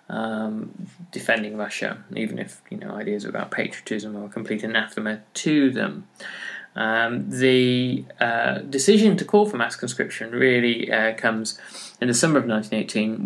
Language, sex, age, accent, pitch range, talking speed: English, male, 20-39, British, 110-135 Hz, 150 wpm